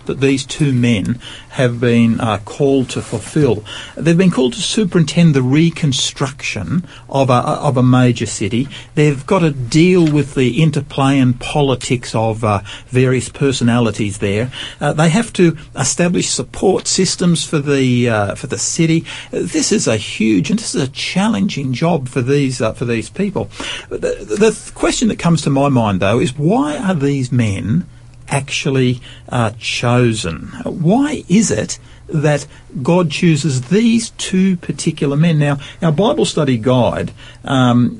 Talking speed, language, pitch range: 160 wpm, English, 120-160 Hz